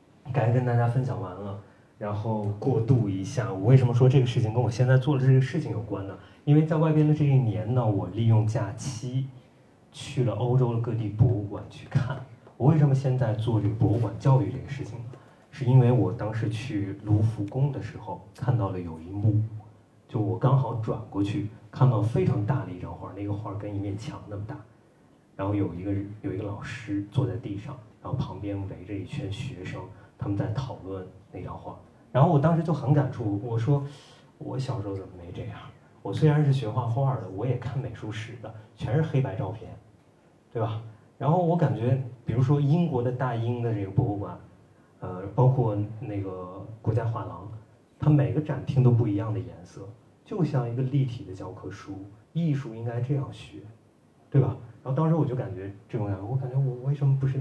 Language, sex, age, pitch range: Chinese, male, 30-49, 105-135 Hz